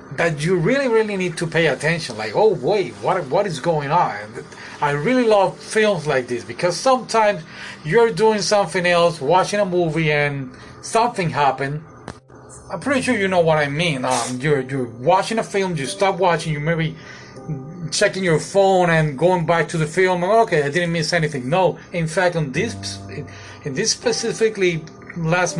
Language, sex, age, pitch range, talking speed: English, male, 30-49, 150-195 Hz, 180 wpm